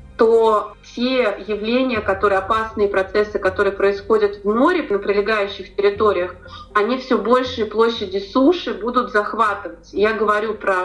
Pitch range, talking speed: 190-220 Hz, 125 wpm